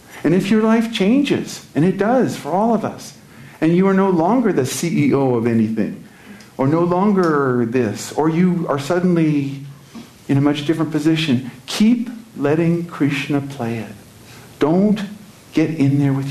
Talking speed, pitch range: 160 wpm, 115-165 Hz